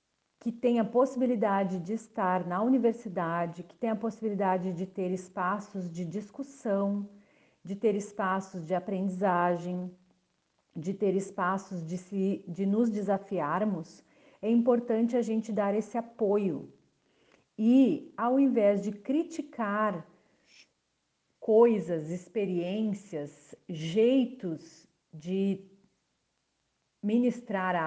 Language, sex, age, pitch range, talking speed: Portuguese, female, 50-69, 185-240 Hz, 100 wpm